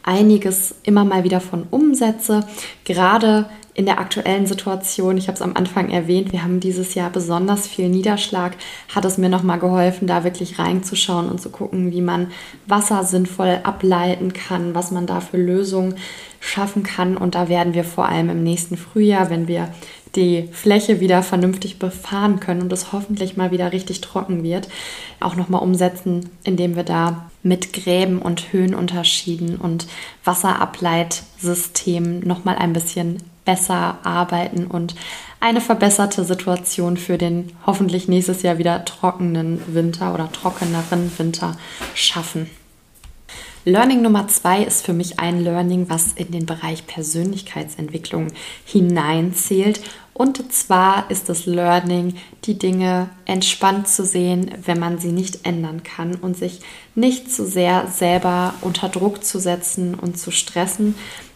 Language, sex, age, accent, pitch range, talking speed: English, female, 20-39, German, 175-190 Hz, 145 wpm